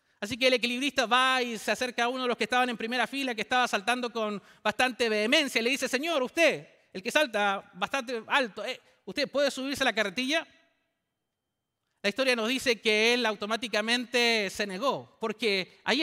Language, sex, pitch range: English, male, 200-260 Hz